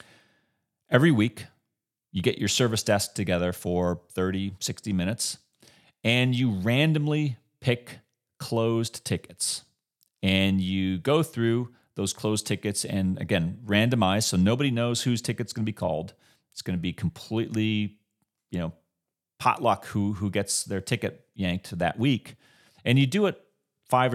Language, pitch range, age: English, 90-120 Hz, 30-49